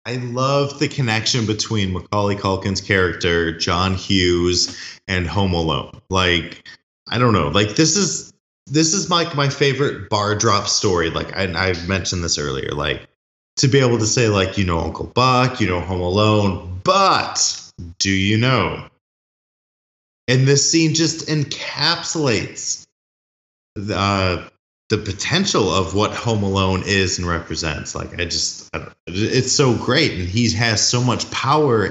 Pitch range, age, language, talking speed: 90-125 Hz, 20-39, English, 155 wpm